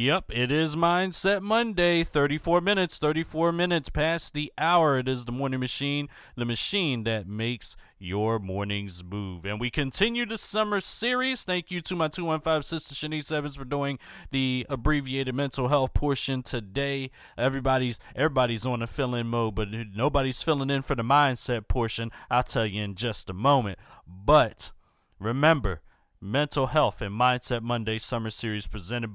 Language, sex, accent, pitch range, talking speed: English, male, American, 105-145 Hz, 160 wpm